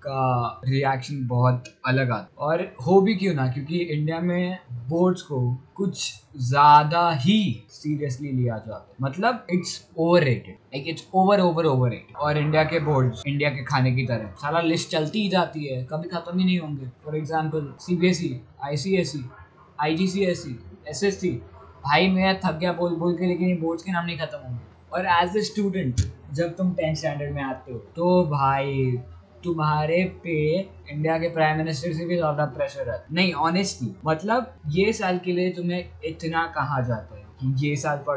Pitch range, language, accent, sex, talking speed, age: 130-180 Hz, Hindi, native, male, 130 wpm, 20-39